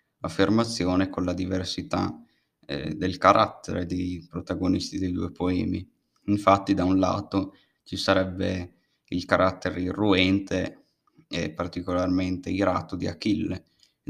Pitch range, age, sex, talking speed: 90-95 Hz, 20-39, male, 115 wpm